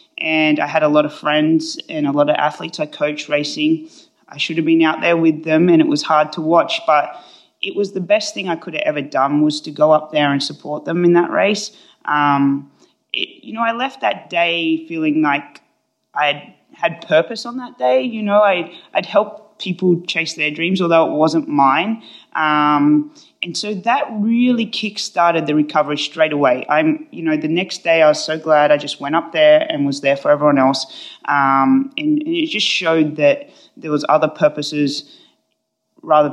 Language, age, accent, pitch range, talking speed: English, 20-39, Australian, 150-215 Hz, 205 wpm